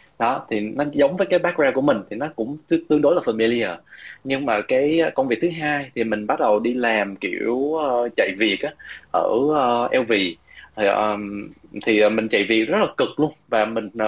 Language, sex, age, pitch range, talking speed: Vietnamese, male, 20-39, 105-145 Hz, 190 wpm